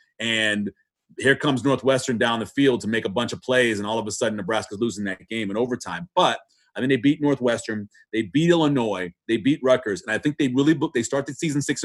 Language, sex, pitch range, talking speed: English, male, 120-155 Hz, 240 wpm